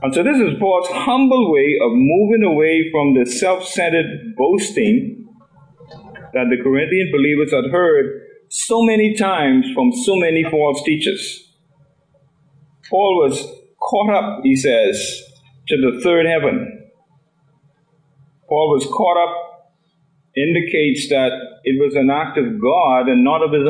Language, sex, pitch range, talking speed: English, male, 150-220 Hz, 135 wpm